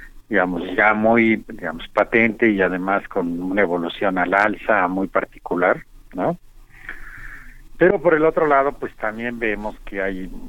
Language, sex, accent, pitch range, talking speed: Spanish, male, Mexican, 95-110 Hz, 145 wpm